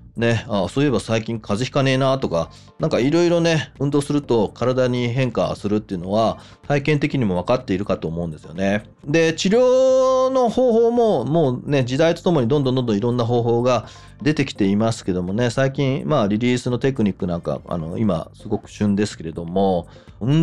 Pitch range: 100-145 Hz